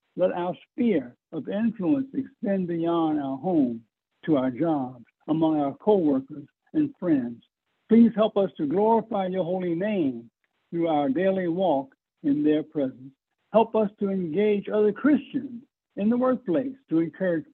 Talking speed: 145 wpm